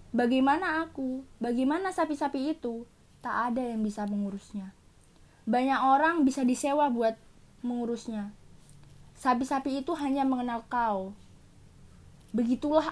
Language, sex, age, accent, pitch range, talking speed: Indonesian, female, 20-39, native, 215-270 Hz, 100 wpm